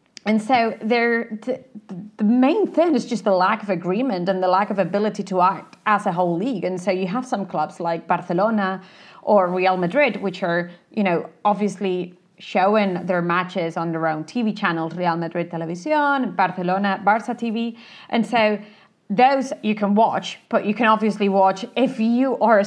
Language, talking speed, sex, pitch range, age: English, 175 wpm, female, 185-225 Hz, 30-49